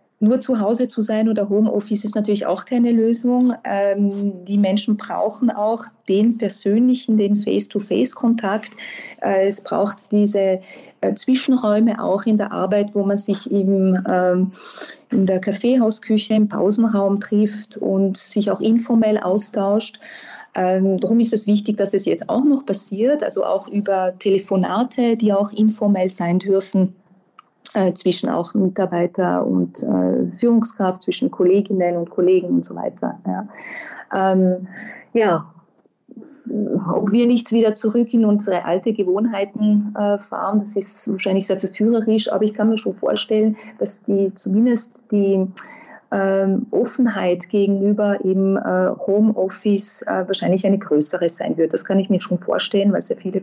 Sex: female